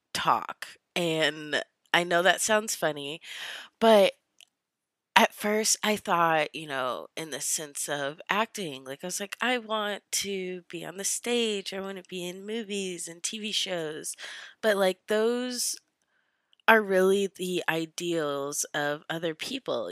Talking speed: 150 wpm